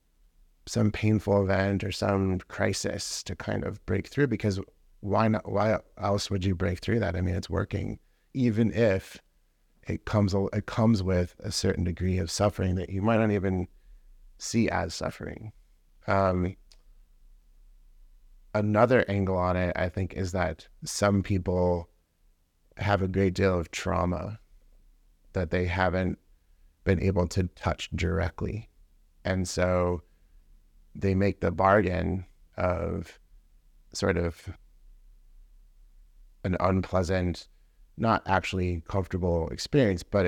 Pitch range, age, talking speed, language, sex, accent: 85-100 Hz, 30-49, 130 wpm, English, male, American